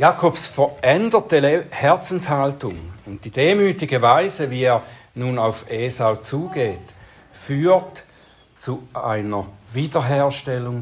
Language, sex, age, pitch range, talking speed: German, male, 60-79, 120-175 Hz, 95 wpm